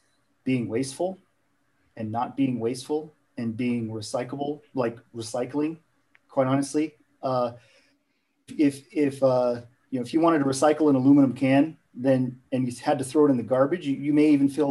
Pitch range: 120-145 Hz